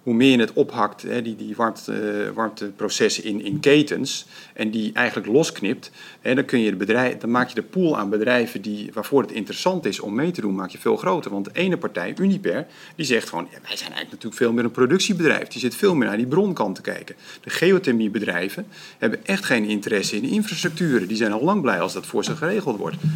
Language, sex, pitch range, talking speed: English, male, 110-165 Hz, 205 wpm